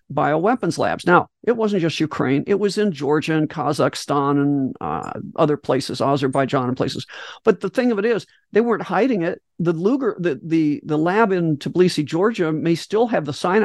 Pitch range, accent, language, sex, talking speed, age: 160-205 Hz, American, English, male, 195 wpm, 50-69